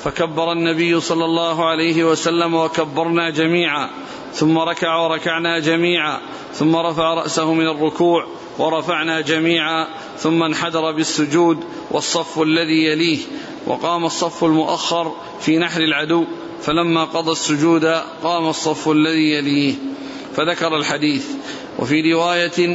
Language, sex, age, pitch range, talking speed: Arabic, male, 40-59, 160-170 Hz, 110 wpm